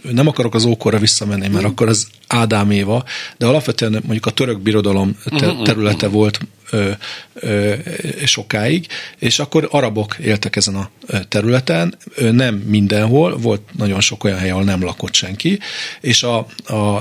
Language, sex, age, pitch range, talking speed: Hungarian, male, 40-59, 100-120 Hz, 140 wpm